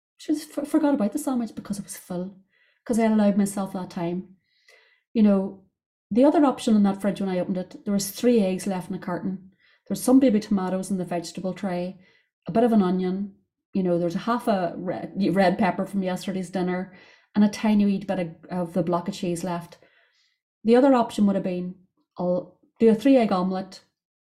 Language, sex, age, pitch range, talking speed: English, female, 30-49, 180-240 Hz, 210 wpm